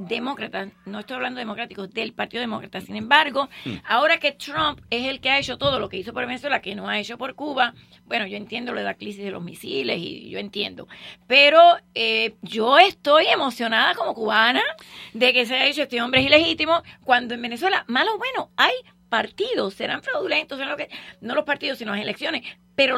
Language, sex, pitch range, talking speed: English, female, 230-290 Hz, 210 wpm